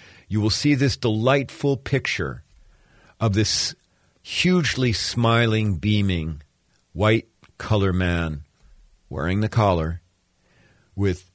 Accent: American